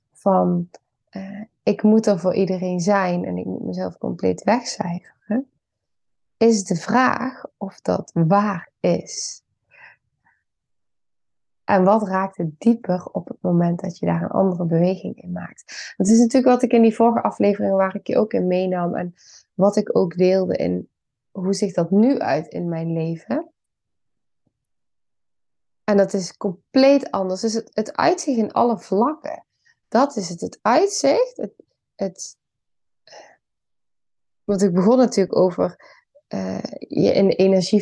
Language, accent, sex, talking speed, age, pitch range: Dutch, Dutch, female, 150 wpm, 20-39, 180-230 Hz